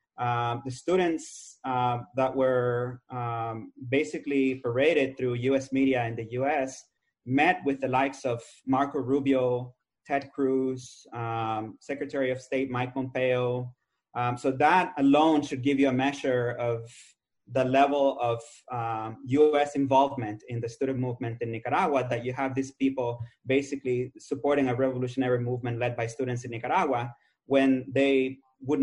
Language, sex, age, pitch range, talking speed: English, male, 30-49, 120-135 Hz, 145 wpm